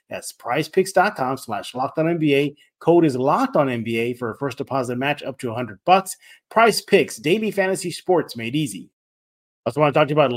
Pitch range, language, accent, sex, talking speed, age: 120-155 Hz, English, American, male, 190 wpm, 30-49